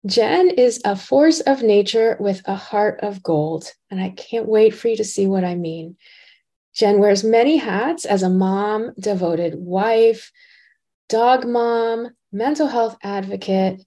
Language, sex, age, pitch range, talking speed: English, female, 30-49, 195-265 Hz, 155 wpm